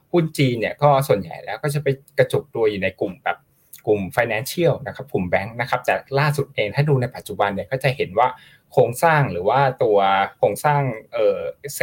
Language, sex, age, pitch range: Thai, male, 20-39, 115-165 Hz